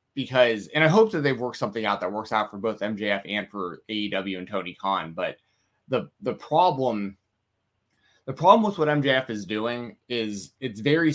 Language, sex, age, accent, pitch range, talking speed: English, male, 20-39, American, 105-135 Hz, 190 wpm